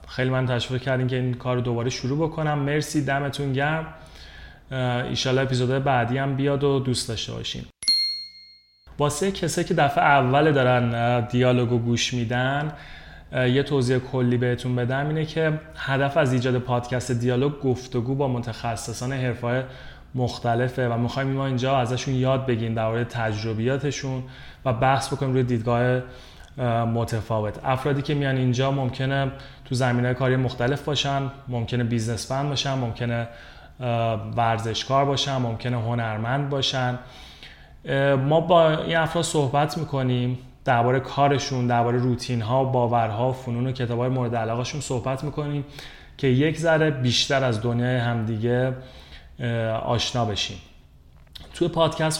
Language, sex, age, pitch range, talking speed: Persian, male, 30-49, 120-140 Hz, 135 wpm